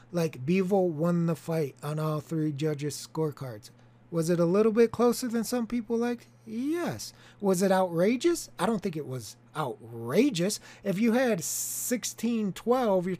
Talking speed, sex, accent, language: 160 wpm, male, American, English